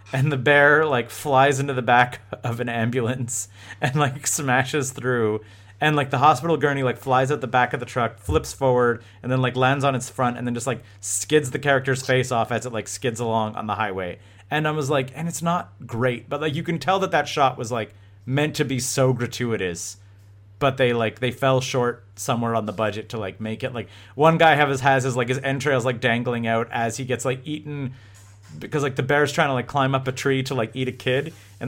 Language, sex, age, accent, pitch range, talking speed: English, male, 30-49, American, 110-135 Hz, 240 wpm